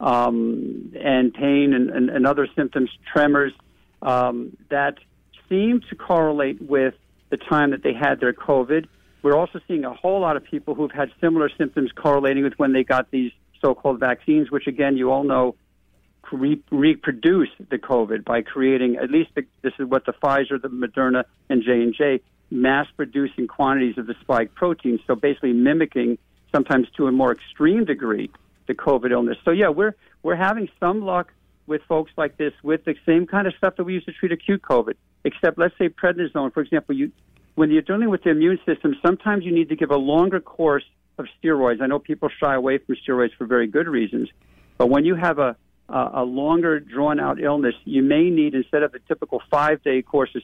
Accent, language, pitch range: American, English, 130-160 Hz